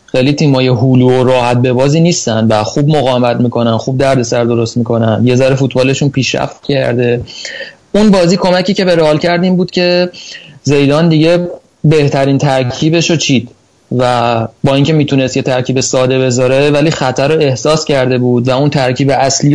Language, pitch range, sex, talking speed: Persian, 125-155 Hz, male, 165 wpm